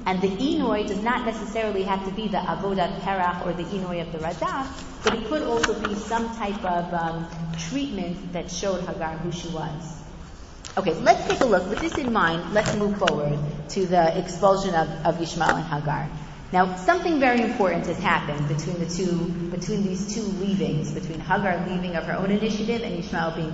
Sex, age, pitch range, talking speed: female, 30-49, 165-210 Hz, 200 wpm